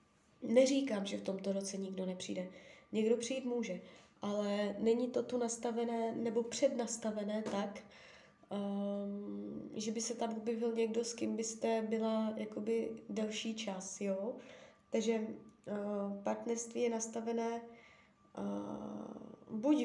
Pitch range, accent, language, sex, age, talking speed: 205-235 Hz, native, Czech, female, 20-39, 110 wpm